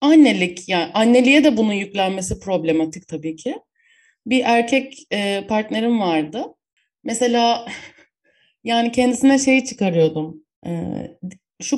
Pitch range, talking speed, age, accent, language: 185-250 Hz, 105 wpm, 30-49, native, Turkish